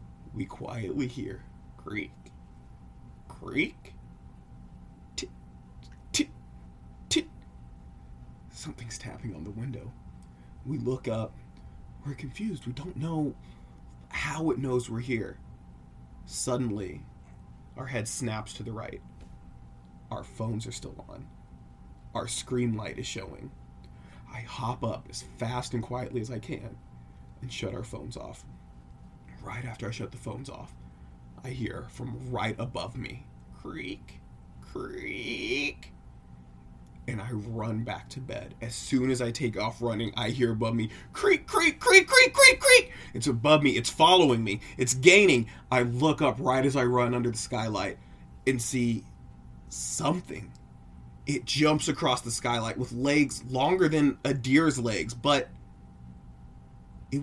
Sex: male